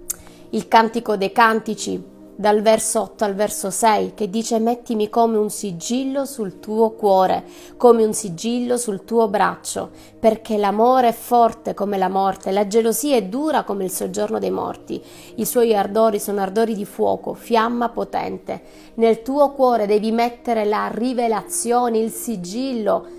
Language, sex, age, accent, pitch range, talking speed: Italian, female, 30-49, native, 205-245 Hz, 155 wpm